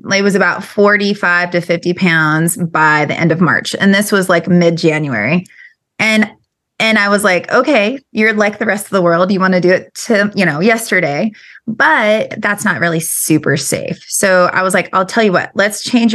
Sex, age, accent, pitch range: female, 20-39, American, 170-215 Hz